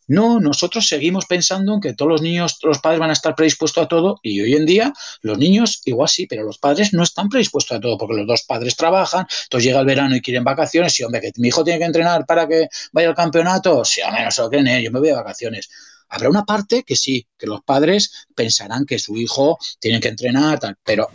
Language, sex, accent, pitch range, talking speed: English, male, Spanish, 120-165 Hz, 250 wpm